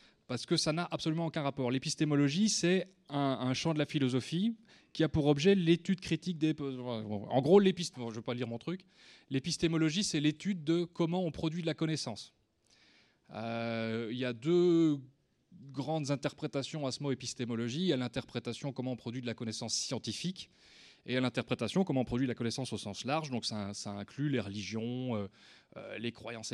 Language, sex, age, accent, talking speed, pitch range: French, male, 20-39, French, 200 wpm, 120-160 Hz